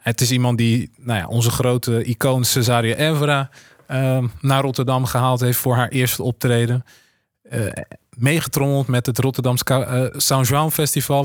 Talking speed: 145 wpm